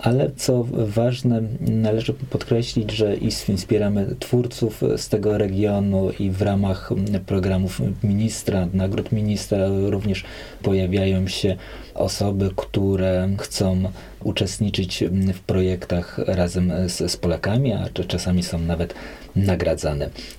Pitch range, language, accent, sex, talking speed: 95-120 Hz, Polish, native, male, 110 wpm